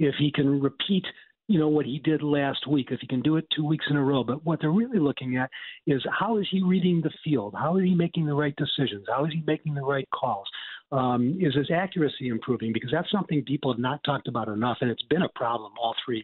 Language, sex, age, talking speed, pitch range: English, male, 50-69, 255 wpm, 140-180 Hz